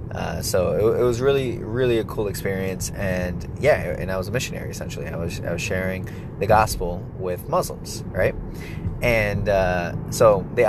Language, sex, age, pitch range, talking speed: English, male, 20-39, 95-130 Hz, 180 wpm